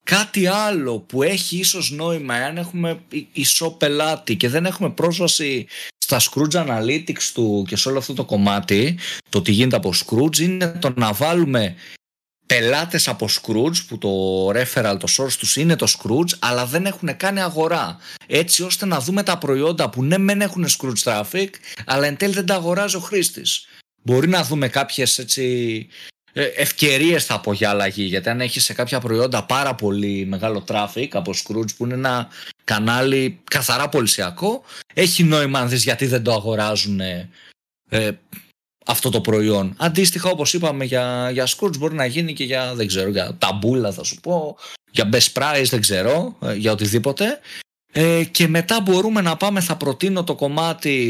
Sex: male